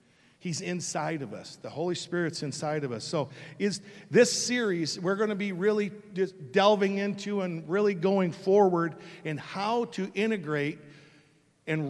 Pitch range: 150-195 Hz